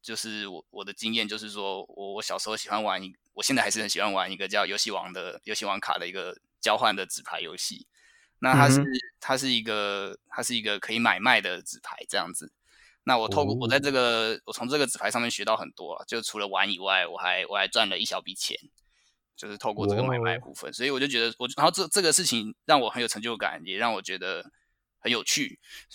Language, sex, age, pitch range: Chinese, male, 20-39, 105-130 Hz